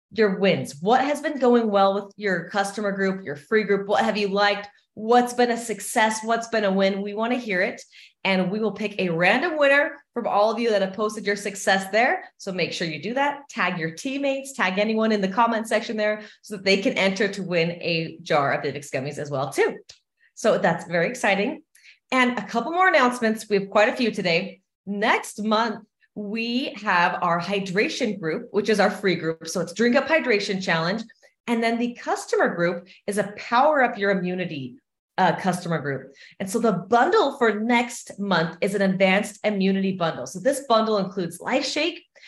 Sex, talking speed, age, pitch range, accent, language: female, 205 wpm, 30-49, 185-235 Hz, American, English